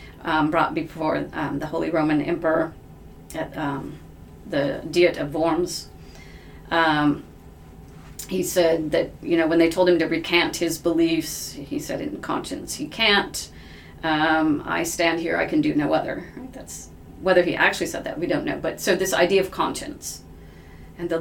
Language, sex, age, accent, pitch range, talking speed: English, female, 40-59, American, 140-175 Hz, 170 wpm